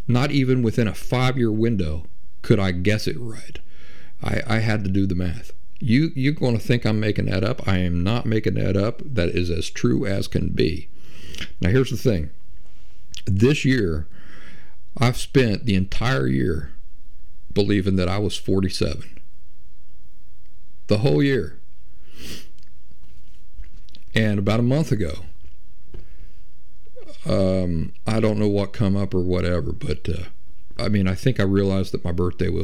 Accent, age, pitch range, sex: American, 50-69, 80-115 Hz, male